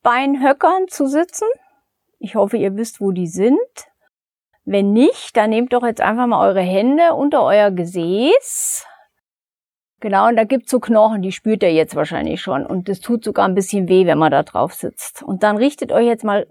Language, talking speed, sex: German, 195 wpm, female